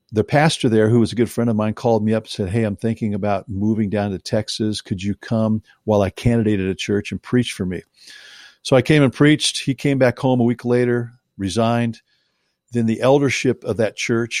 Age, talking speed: 50-69, 225 wpm